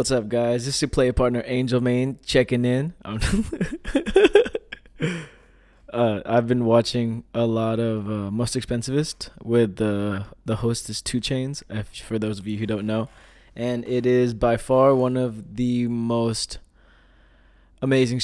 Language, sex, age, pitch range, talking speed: English, male, 20-39, 110-130 Hz, 150 wpm